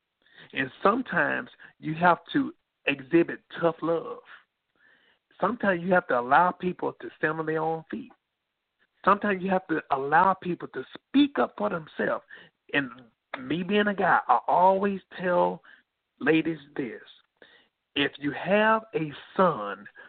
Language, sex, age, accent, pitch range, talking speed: English, male, 50-69, American, 155-195 Hz, 135 wpm